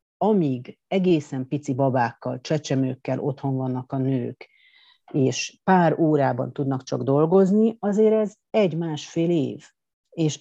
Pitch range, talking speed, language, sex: 135-180 Hz, 120 wpm, Hungarian, female